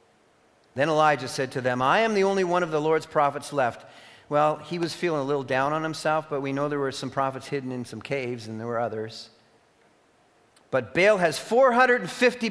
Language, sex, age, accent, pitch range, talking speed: English, male, 40-59, American, 130-195 Hz, 205 wpm